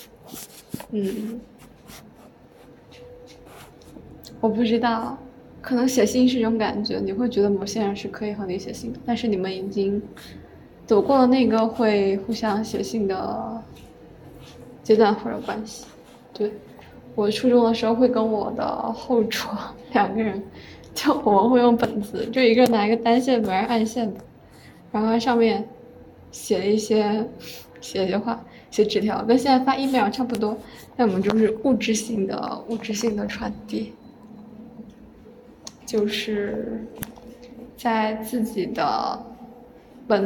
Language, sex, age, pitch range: Chinese, female, 20-39, 210-240 Hz